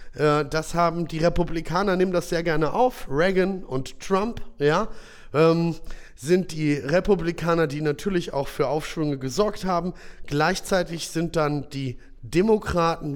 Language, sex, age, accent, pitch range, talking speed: German, male, 30-49, German, 135-170 Hz, 130 wpm